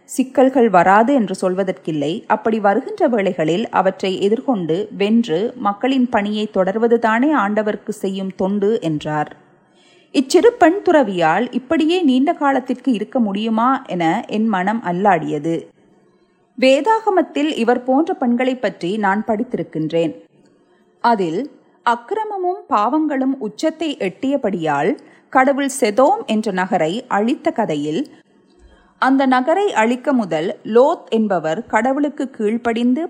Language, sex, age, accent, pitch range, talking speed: Tamil, female, 30-49, native, 195-275 Hz, 100 wpm